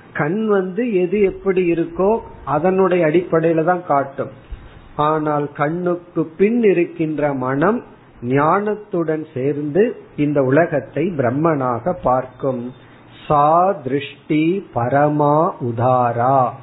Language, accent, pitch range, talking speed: Tamil, native, 130-175 Hz, 85 wpm